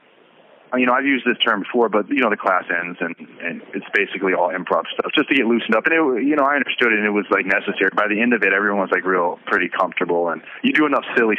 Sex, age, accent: male, 30-49, American